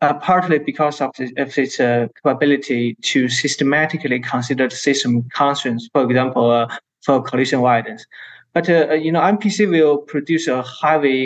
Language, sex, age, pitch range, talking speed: English, male, 20-39, 135-165 Hz, 155 wpm